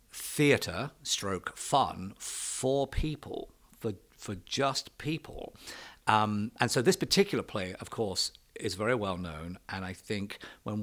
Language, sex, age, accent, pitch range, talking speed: English, male, 50-69, British, 95-125 Hz, 140 wpm